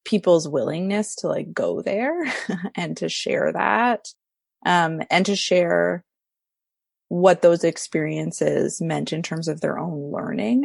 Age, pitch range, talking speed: 20-39, 160-220 Hz, 135 wpm